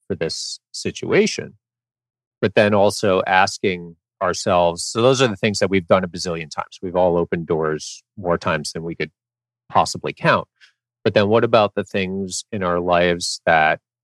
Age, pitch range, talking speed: 30-49, 85-115 Hz, 165 wpm